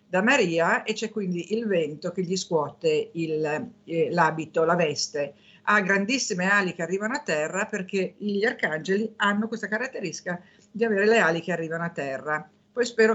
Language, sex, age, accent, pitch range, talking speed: Italian, female, 50-69, native, 165-205 Hz, 175 wpm